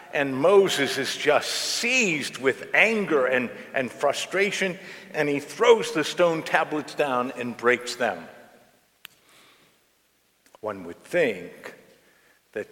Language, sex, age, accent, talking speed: English, male, 50-69, American, 115 wpm